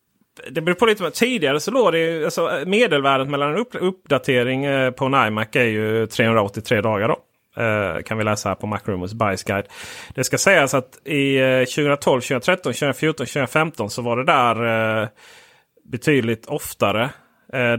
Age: 30-49